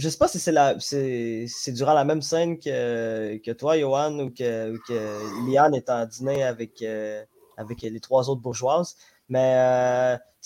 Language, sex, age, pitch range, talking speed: French, male, 20-39, 120-145 Hz, 185 wpm